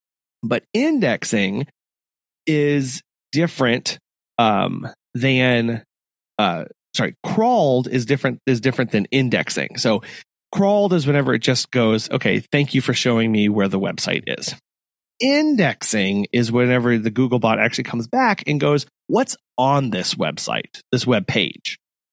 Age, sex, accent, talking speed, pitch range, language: 30-49, male, American, 135 wpm, 105-140 Hz, English